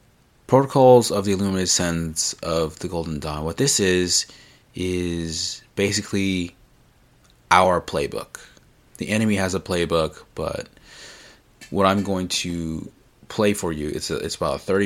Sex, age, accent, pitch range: male, 30-49, American, 80-95 Hz